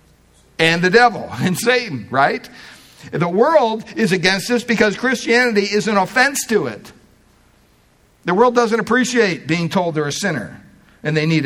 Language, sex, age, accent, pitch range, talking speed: English, male, 60-79, American, 150-210 Hz, 155 wpm